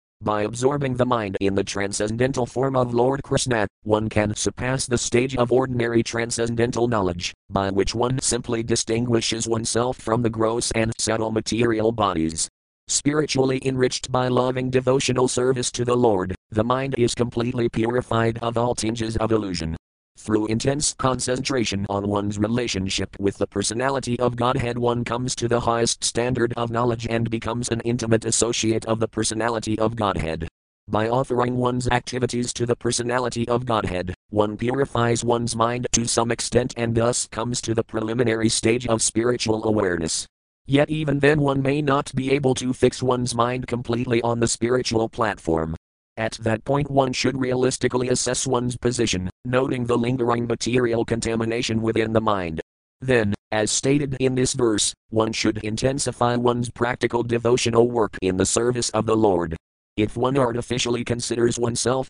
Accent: American